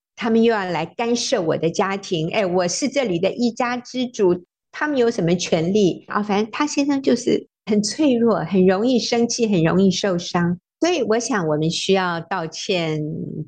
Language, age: Chinese, 50-69